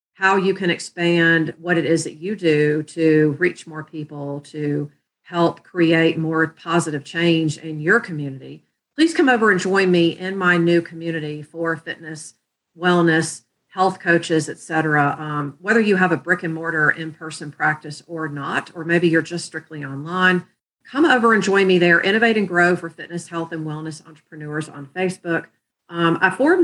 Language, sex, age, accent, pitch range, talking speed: English, female, 40-59, American, 155-185 Hz, 170 wpm